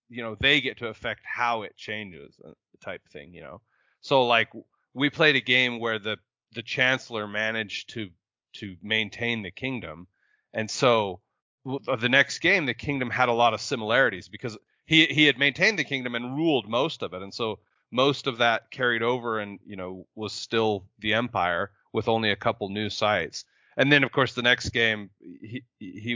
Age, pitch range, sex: 30-49, 105-125 Hz, male